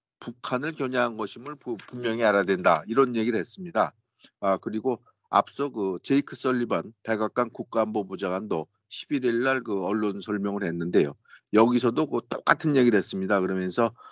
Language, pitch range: Korean, 105-130 Hz